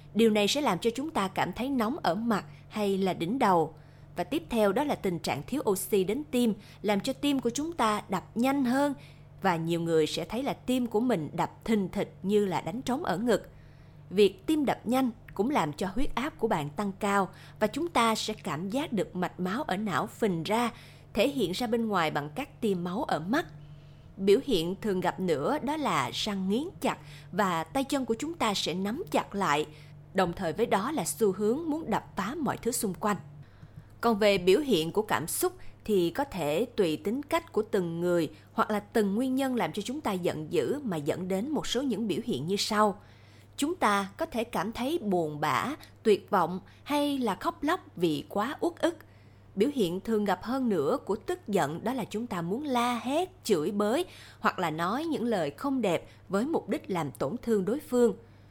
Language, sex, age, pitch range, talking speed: Vietnamese, female, 20-39, 175-245 Hz, 220 wpm